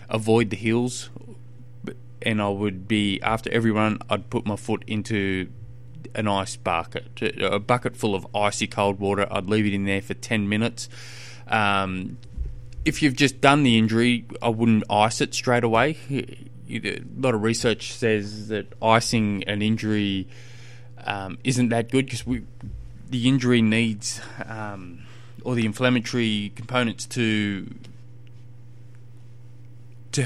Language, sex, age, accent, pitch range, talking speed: English, male, 20-39, Australian, 105-120 Hz, 140 wpm